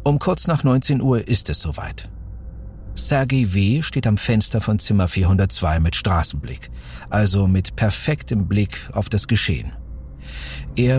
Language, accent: German, German